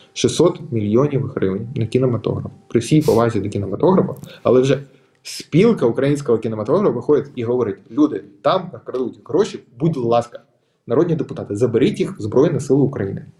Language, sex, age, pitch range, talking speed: Ukrainian, male, 20-39, 115-155 Hz, 145 wpm